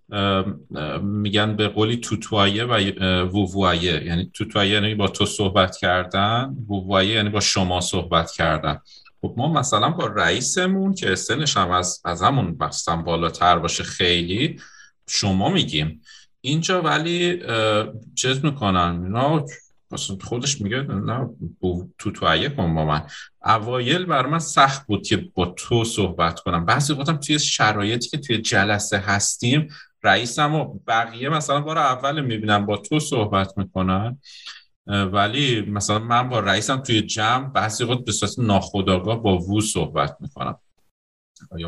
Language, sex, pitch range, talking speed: Persian, male, 90-120 Hz, 130 wpm